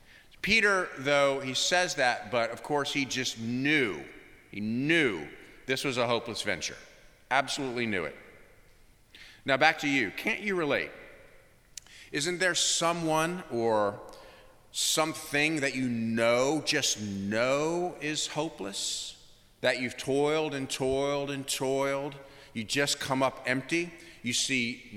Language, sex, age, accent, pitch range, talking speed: English, male, 40-59, American, 115-165 Hz, 130 wpm